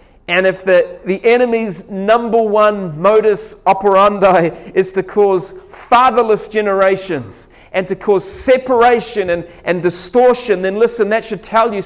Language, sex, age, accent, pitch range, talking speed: English, male, 40-59, Australian, 145-215 Hz, 135 wpm